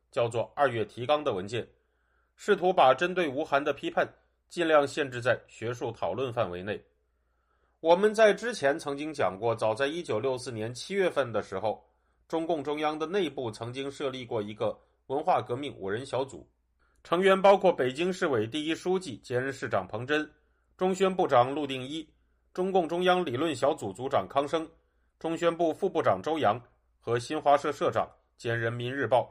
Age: 30-49